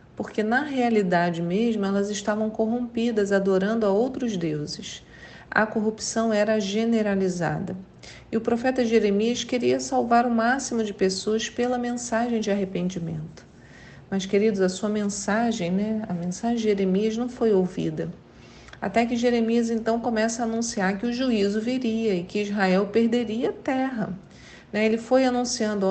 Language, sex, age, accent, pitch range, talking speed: Portuguese, female, 40-59, Brazilian, 190-230 Hz, 145 wpm